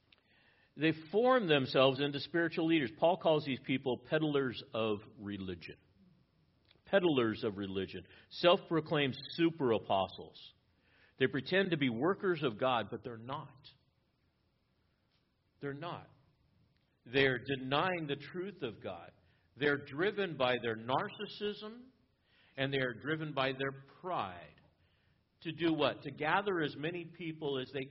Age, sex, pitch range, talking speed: 50-69, male, 120-170 Hz, 125 wpm